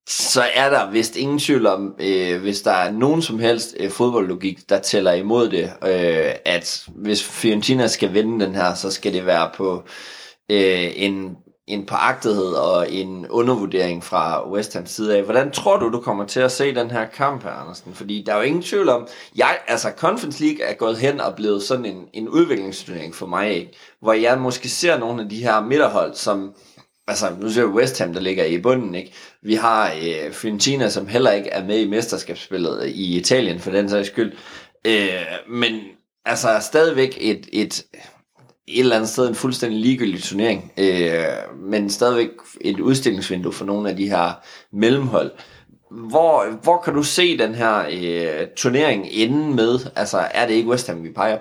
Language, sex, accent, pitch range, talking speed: Danish, male, native, 95-125 Hz, 190 wpm